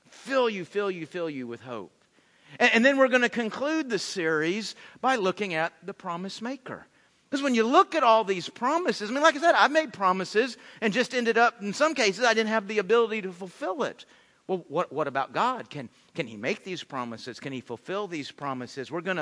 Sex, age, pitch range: male, 50-69, 170-245 Hz